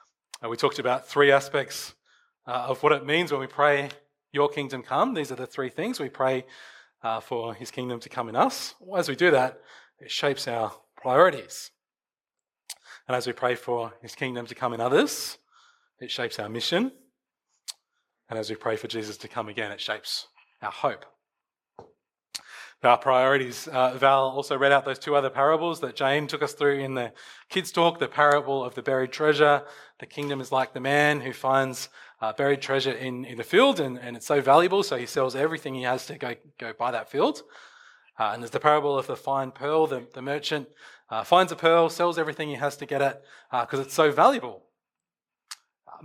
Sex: male